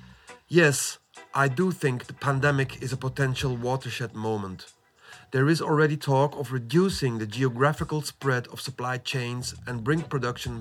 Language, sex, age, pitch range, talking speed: English, male, 40-59, 125-150 Hz, 145 wpm